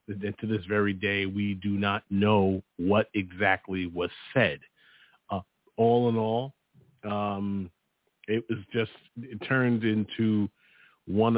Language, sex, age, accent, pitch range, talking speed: English, male, 40-59, American, 95-110 Hz, 125 wpm